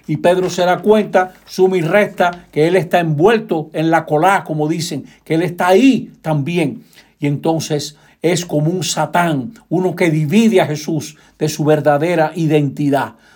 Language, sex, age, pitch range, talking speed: Spanish, male, 60-79, 145-180 Hz, 165 wpm